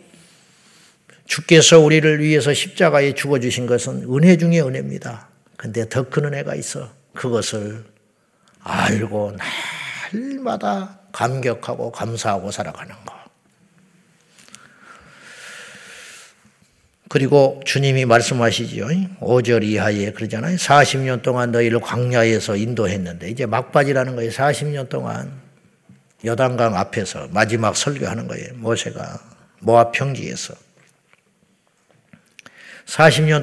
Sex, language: male, Korean